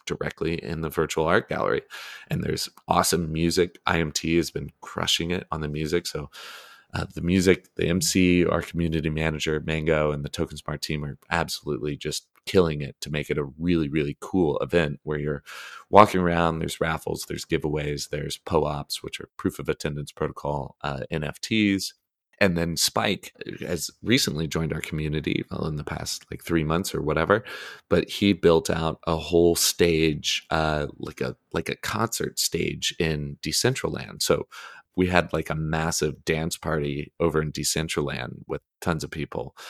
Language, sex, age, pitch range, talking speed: English, male, 30-49, 75-85 Hz, 170 wpm